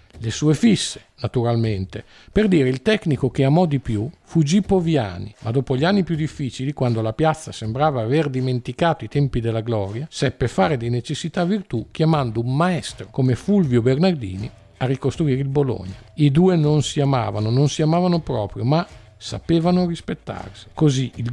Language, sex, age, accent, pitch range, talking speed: Italian, male, 50-69, native, 110-155 Hz, 165 wpm